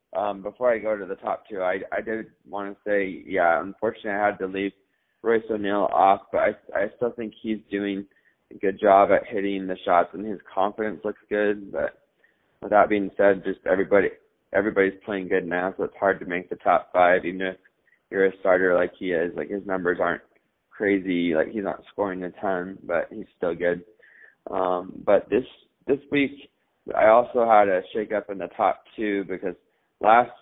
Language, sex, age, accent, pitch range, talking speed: English, male, 20-39, American, 95-105 Hz, 200 wpm